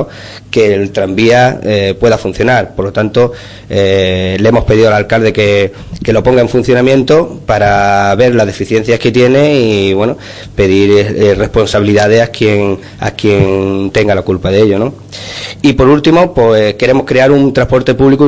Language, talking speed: Spanish, 165 wpm